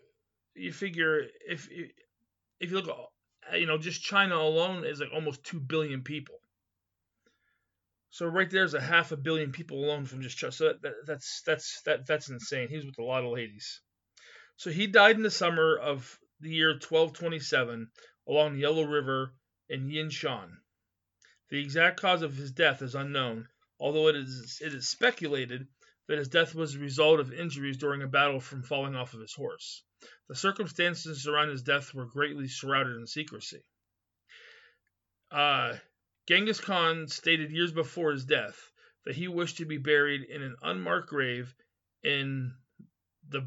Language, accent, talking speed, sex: English, American, 165 wpm, male